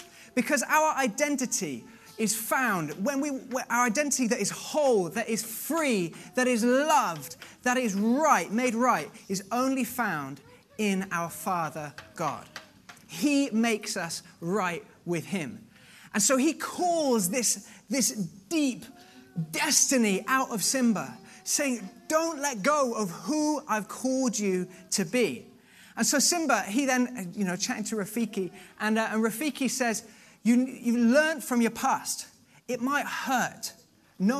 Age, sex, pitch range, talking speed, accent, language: 20-39, male, 200-260 Hz, 145 wpm, British, English